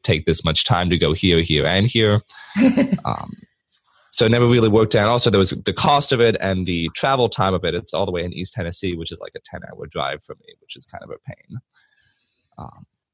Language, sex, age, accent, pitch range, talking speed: English, male, 20-39, American, 85-105 Hz, 240 wpm